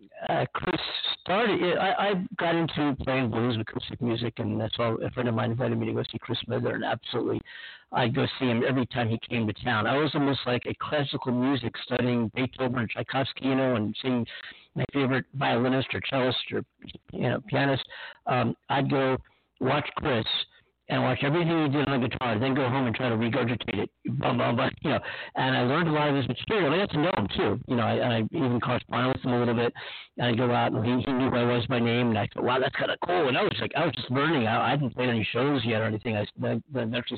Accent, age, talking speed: American, 60-79, 250 wpm